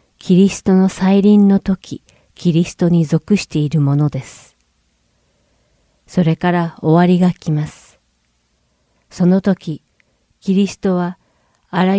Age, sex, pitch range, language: 40-59, female, 145-185 Hz, Japanese